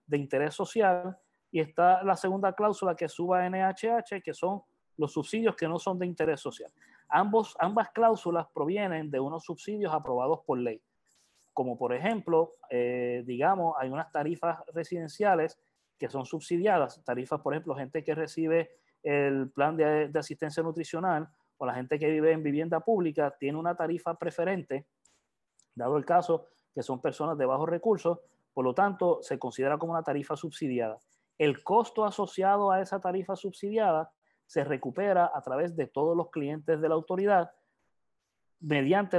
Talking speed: 160 wpm